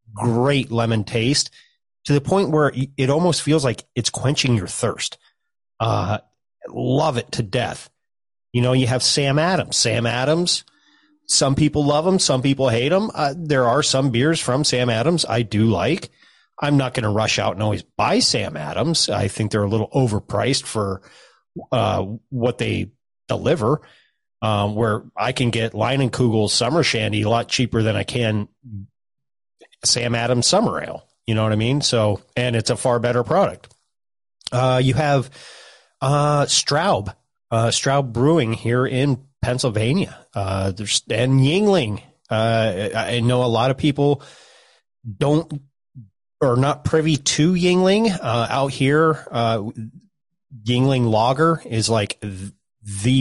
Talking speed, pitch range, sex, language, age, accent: 155 wpm, 115-145 Hz, male, English, 30-49, American